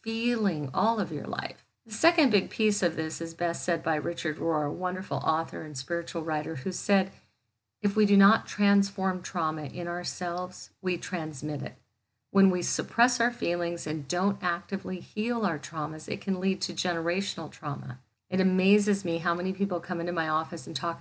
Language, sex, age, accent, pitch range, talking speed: English, female, 50-69, American, 155-190 Hz, 185 wpm